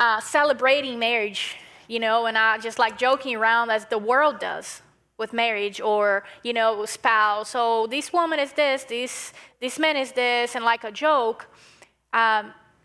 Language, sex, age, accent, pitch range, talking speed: English, female, 10-29, American, 230-295 Hz, 170 wpm